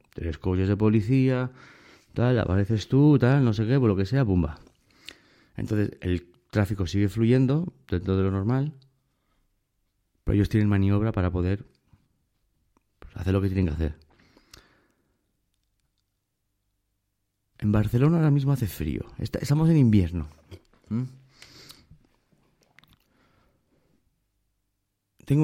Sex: male